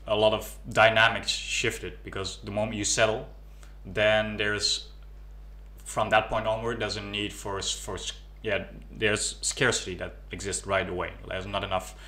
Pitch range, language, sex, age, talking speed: 95-105 Hz, English, male, 20-39, 160 wpm